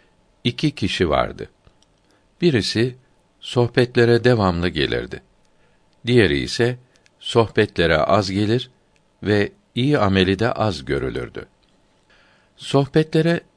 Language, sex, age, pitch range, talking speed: Turkish, male, 60-79, 95-125 Hz, 85 wpm